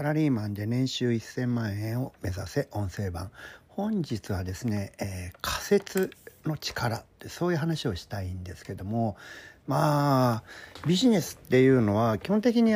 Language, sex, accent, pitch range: Japanese, male, native, 105-145 Hz